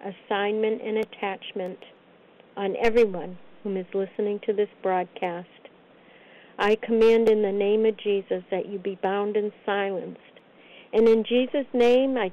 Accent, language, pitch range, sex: American, English, 195-240 Hz, female